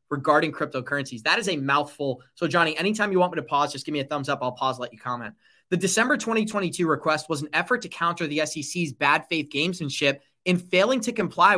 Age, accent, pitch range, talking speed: 30-49, American, 145-190 Hz, 225 wpm